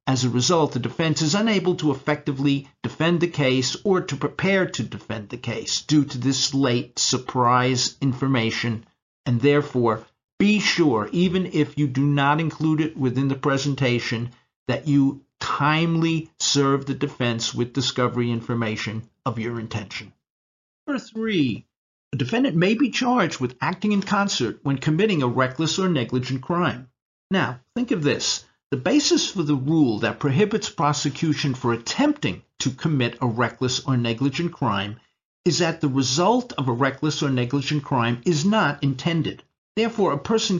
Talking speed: 155 wpm